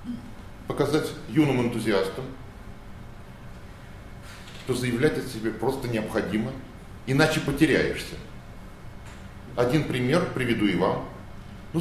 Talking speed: 85 wpm